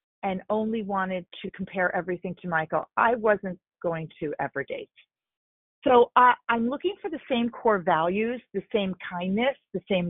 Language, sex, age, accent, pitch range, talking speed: English, female, 40-59, American, 185-245 Hz, 165 wpm